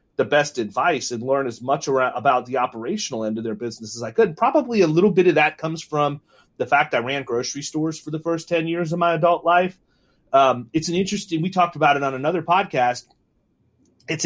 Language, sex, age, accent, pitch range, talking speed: English, male, 30-49, American, 125-170 Hz, 220 wpm